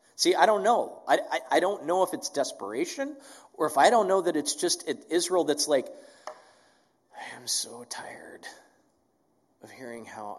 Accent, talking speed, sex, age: American, 175 wpm, male, 40-59